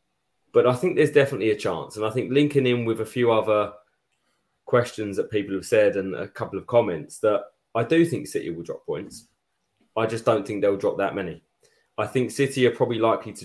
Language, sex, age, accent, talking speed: English, male, 20-39, British, 220 wpm